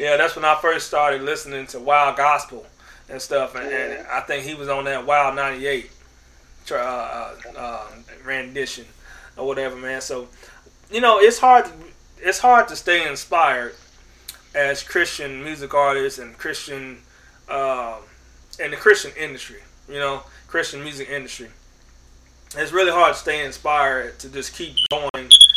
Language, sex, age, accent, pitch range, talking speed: English, male, 30-49, American, 130-155 Hz, 155 wpm